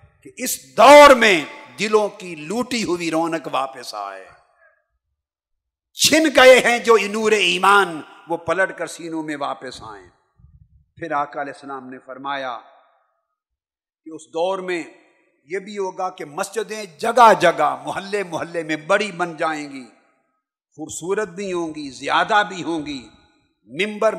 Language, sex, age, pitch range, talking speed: Urdu, male, 50-69, 145-200 Hz, 140 wpm